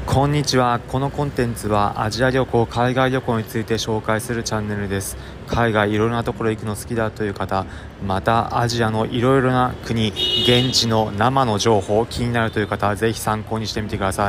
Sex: male